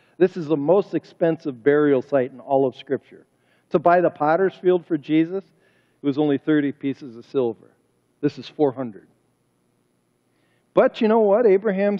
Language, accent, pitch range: English, American, 135-205 Hz